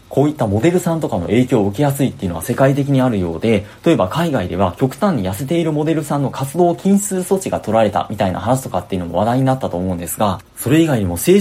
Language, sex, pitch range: Japanese, male, 100-160 Hz